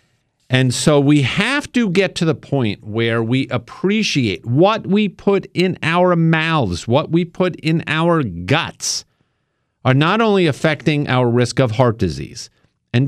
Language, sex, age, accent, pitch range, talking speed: English, male, 50-69, American, 115-160 Hz, 155 wpm